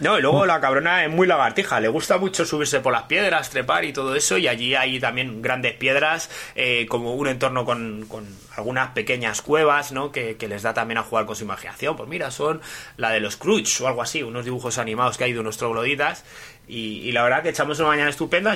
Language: Spanish